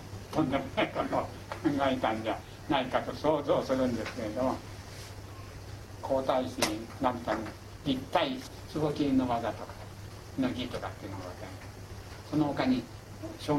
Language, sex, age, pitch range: Japanese, male, 60-79, 100-125 Hz